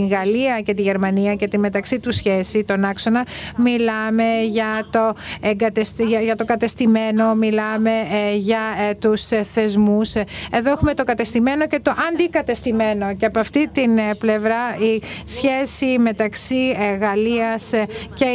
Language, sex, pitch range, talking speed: Greek, female, 220-250 Hz, 130 wpm